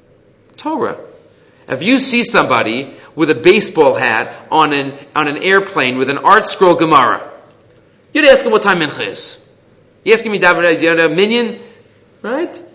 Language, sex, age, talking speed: English, male, 30-49, 160 wpm